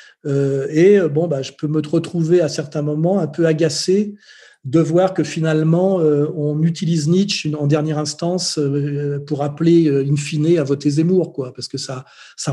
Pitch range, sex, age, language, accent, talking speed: 140-160 Hz, male, 40-59, French, French, 185 wpm